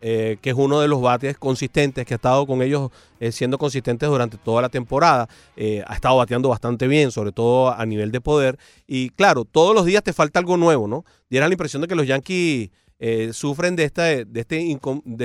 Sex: male